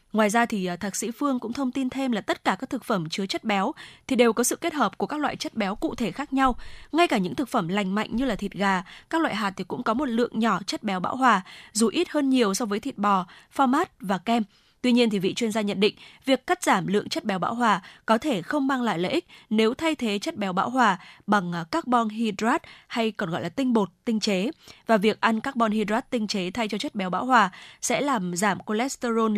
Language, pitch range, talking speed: Vietnamese, 205-260 Hz, 260 wpm